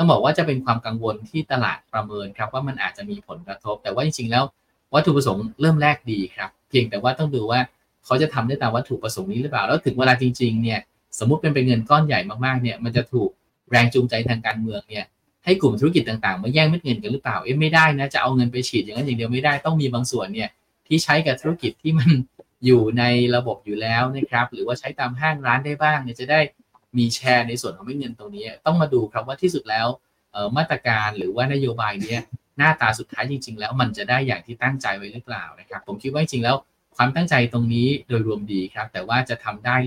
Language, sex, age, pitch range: Thai, male, 20-39, 115-145 Hz